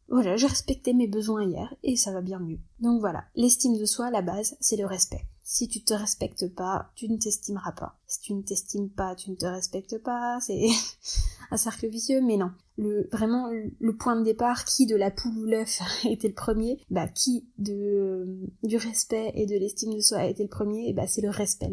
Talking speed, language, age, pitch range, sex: 230 wpm, French, 20-39, 200-235 Hz, female